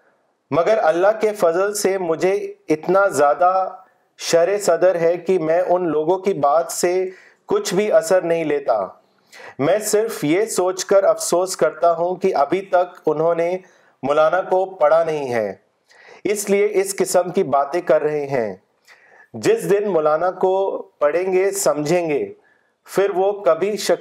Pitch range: 155-190 Hz